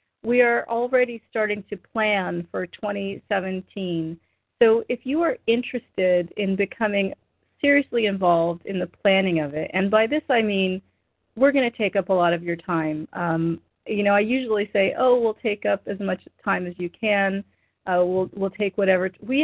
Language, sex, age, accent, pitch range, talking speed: English, female, 40-59, American, 170-205 Hz, 180 wpm